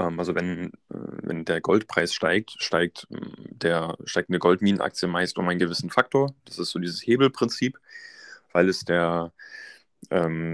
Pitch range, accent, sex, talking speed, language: 90-100 Hz, German, male, 140 wpm, German